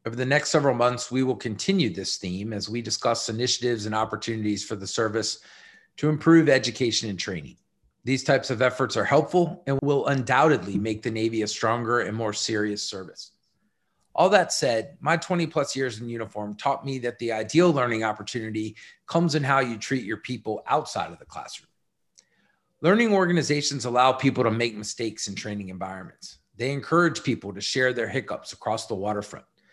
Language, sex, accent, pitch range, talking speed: English, male, American, 110-145 Hz, 180 wpm